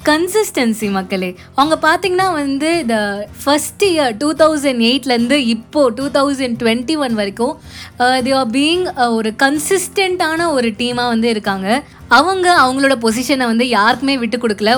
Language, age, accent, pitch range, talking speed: Tamil, 20-39, native, 220-295 Hz, 130 wpm